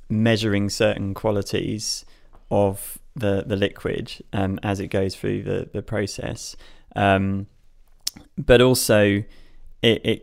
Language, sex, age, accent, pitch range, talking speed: English, male, 20-39, British, 100-110 Hz, 115 wpm